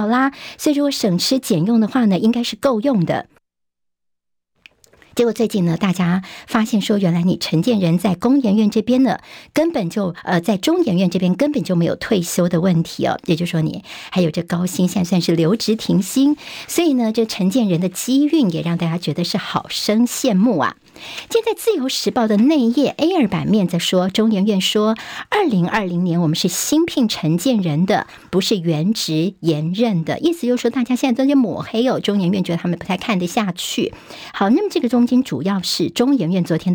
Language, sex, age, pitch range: Chinese, male, 50-69, 180-240 Hz